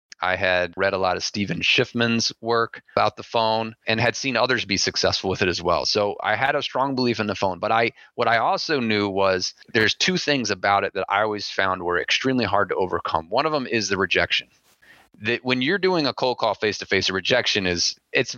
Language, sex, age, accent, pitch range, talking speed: English, male, 30-49, American, 100-125 Hz, 230 wpm